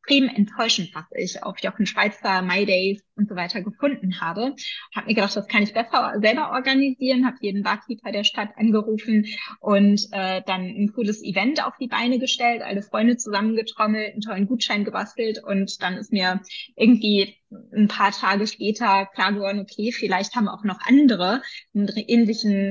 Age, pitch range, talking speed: 20-39, 195-230 Hz, 170 wpm